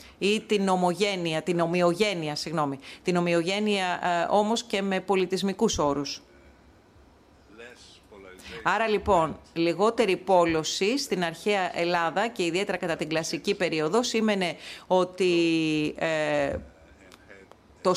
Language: Greek